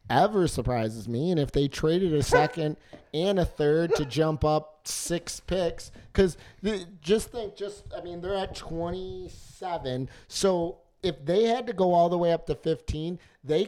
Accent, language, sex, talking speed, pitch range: American, English, male, 170 wpm, 145-180 Hz